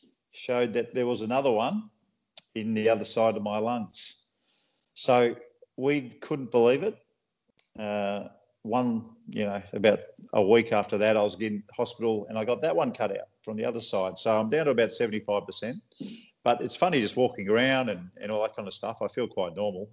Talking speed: 195 wpm